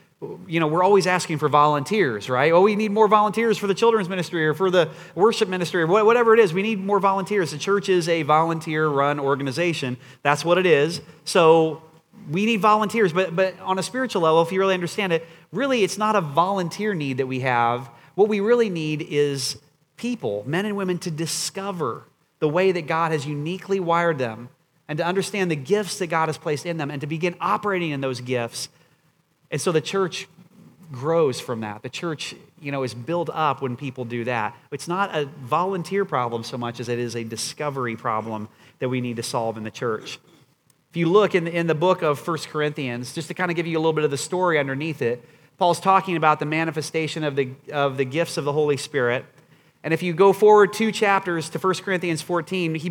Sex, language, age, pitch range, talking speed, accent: male, English, 30-49, 150-190 Hz, 215 wpm, American